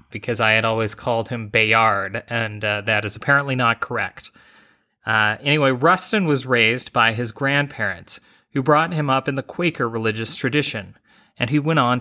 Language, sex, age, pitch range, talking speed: English, male, 30-49, 110-140 Hz, 175 wpm